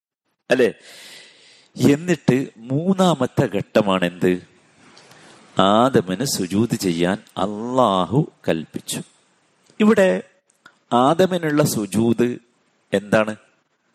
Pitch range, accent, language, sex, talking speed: 115-160 Hz, native, Malayalam, male, 50 wpm